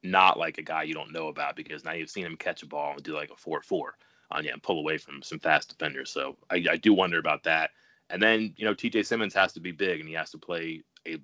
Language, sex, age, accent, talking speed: English, male, 30-49, American, 295 wpm